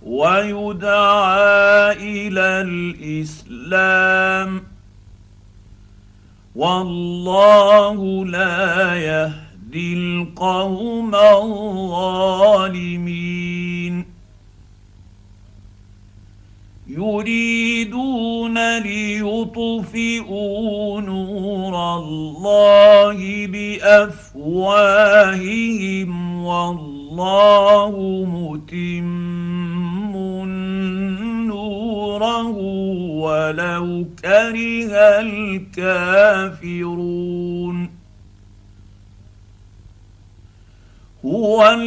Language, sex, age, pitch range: Arabic, male, 50-69, 175-210 Hz